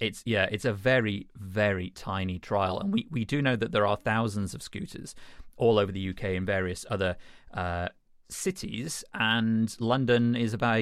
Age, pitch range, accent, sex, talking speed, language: 30-49, 95-125 Hz, British, male, 175 wpm, English